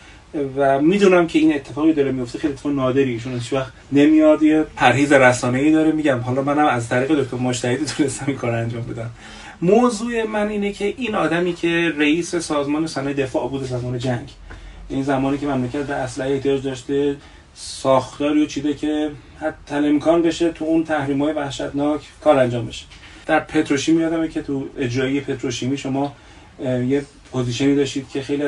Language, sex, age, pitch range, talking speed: Persian, male, 30-49, 130-155 Hz, 165 wpm